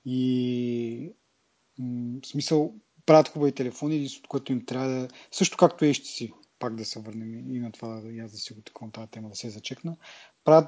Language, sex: Bulgarian, male